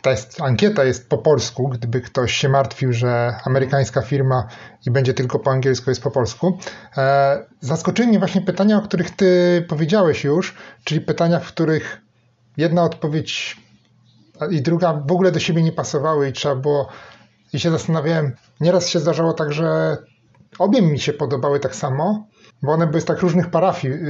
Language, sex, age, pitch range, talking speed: Polish, male, 30-49, 130-165 Hz, 165 wpm